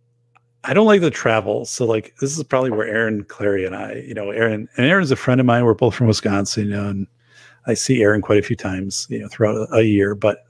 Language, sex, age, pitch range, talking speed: English, male, 40-59, 105-135 Hz, 255 wpm